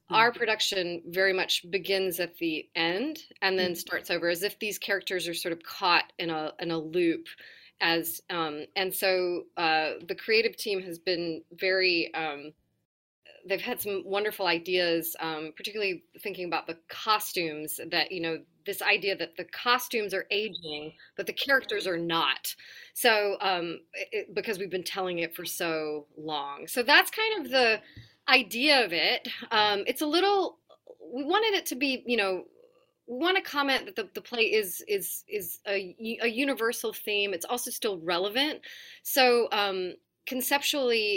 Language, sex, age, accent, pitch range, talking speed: English, female, 30-49, American, 175-250 Hz, 165 wpm